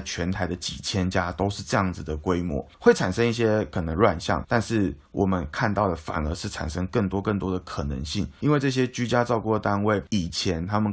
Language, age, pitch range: Chinese, 20-39, 95-115 Hz